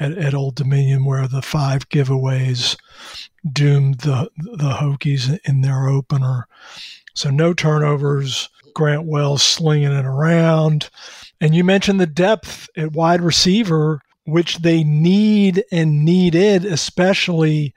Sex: male